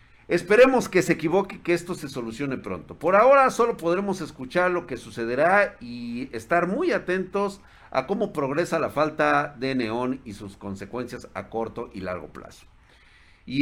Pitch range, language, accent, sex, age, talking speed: 115-175 Hz, Spanish, Mexican, male, 50-69, 165 wpm